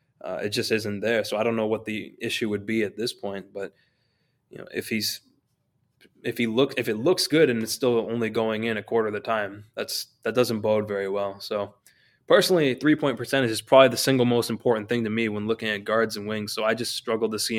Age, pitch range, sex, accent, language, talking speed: 20-39, 110-125 Hz, male, American, English, 250 wpm